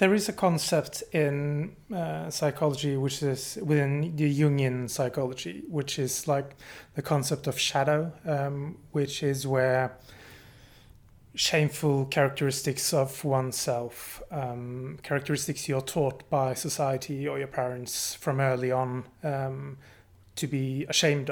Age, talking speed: 30-49, 125 wpm